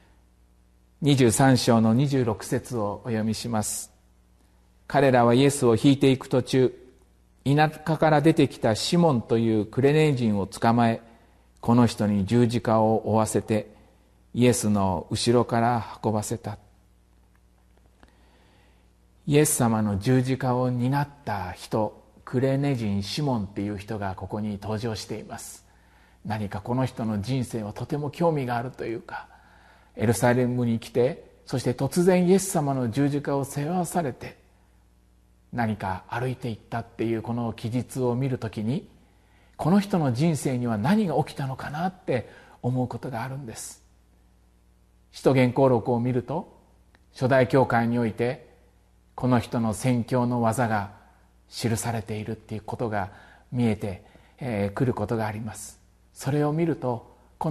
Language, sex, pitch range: Japanese, male, 105-130 Hz